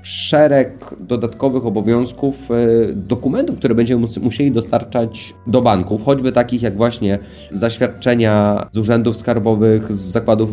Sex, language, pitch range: male, Polish, 105-120 Hz